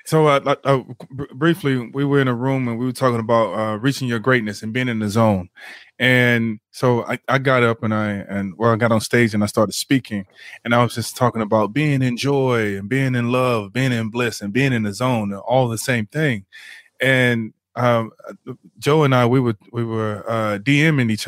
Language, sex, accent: English, male, American